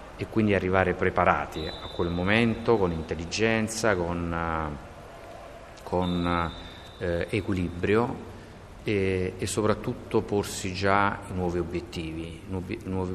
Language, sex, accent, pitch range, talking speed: Italian, male, native, 85-100 Hz, 90 wpm